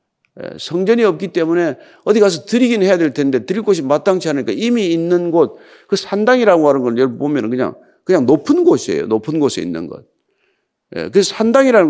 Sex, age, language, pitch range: male, 50-69, Korean, 145-220 Hz